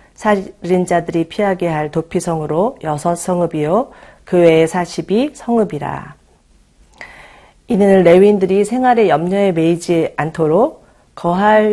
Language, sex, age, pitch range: Korean, female, 40-59, 160-195 Hz